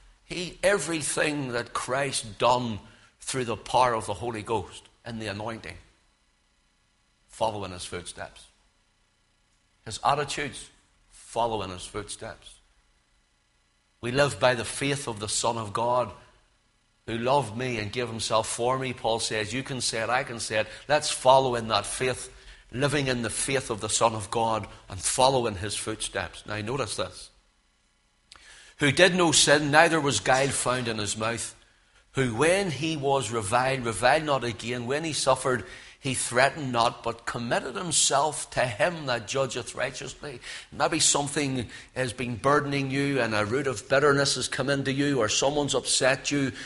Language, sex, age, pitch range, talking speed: English, male, 60-79, 110-140 Hz, 165 wpm